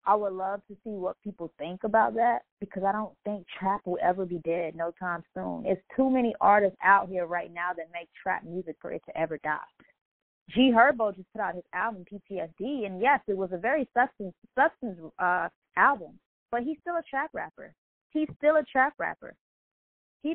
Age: 20-39